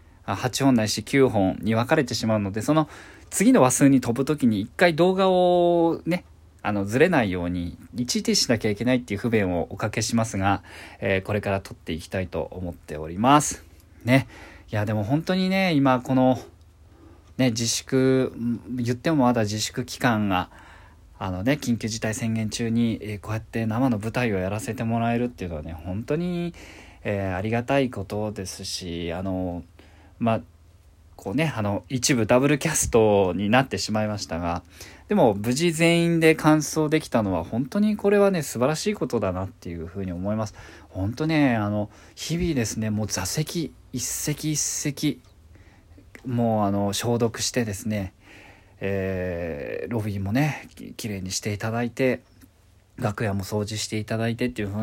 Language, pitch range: Japanese, 95-130 Hz